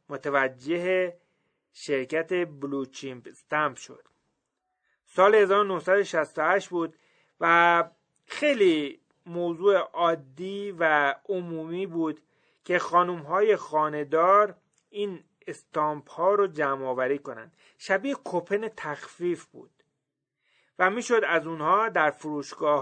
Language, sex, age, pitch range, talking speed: Persian, male, 30-49, 150-185 Hz, 90 wpm